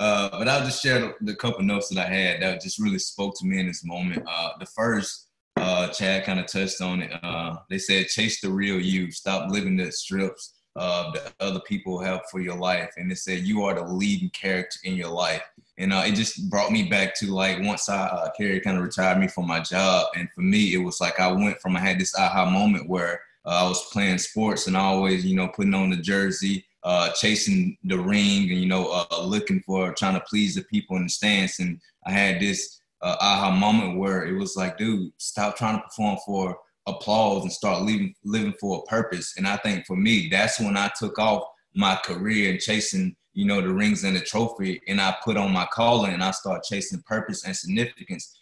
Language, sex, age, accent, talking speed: English, male, 20-39, American, 230 wpm